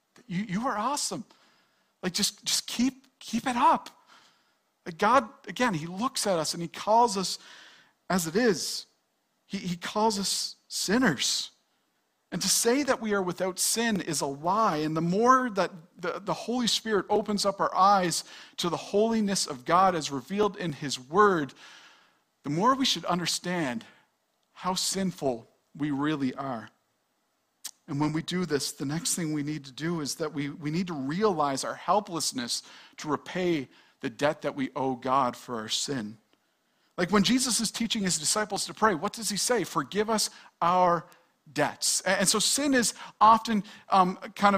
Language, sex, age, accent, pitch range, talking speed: English, male, 50-69, American, 160-220 Hz, 175 wpm